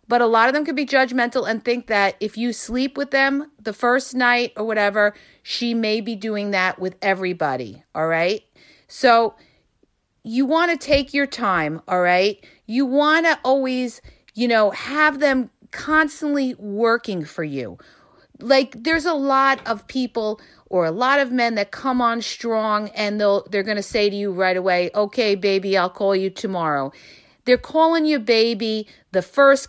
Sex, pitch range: female, 190-260 Hz